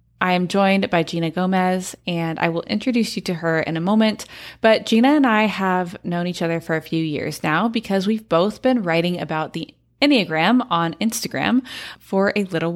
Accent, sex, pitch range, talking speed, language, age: American, female, 170-225 Hz, 200 wpm, English, 20-39